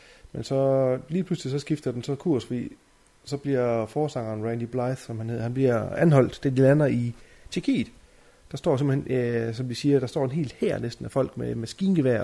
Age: 30-49